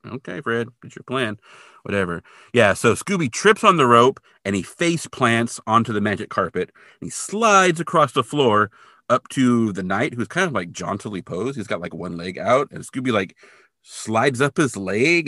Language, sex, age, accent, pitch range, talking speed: English, male, 30-49, American, 100-150 Hz, 195 wpm